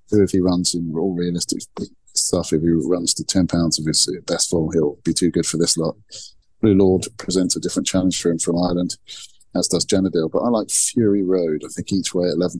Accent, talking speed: British, 225 wpm